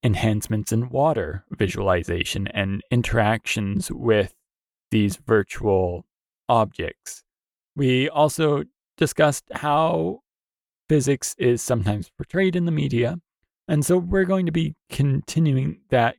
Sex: male